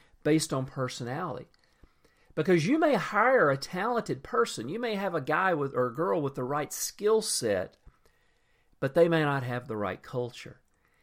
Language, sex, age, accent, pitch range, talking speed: English, male, 50-69, American, 110-155 Hz, 175 wpm